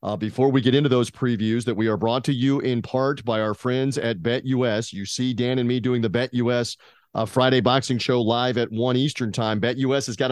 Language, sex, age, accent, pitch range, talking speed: English, male, 40-59, American, 125-155 Hz, 235 wpm